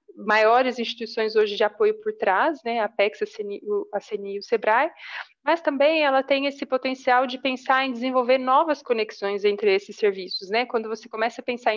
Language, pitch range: Portuguese, 220-260 Hz